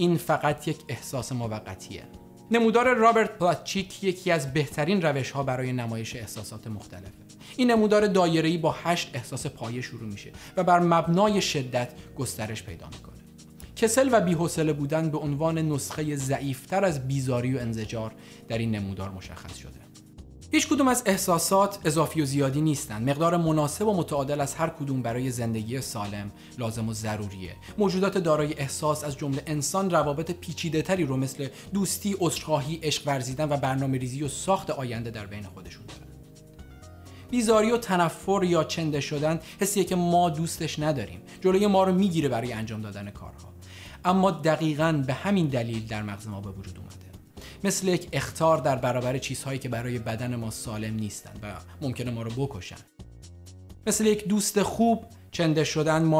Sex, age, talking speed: male, 30-49, 155 wpm